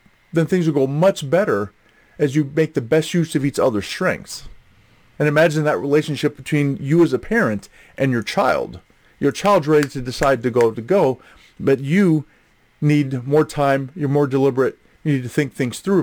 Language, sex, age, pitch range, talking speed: English, male, 40-59, 125-170 Hz, 190 wpm